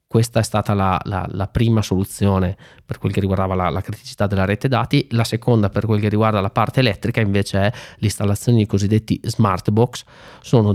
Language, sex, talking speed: Italian, male, 190 wpm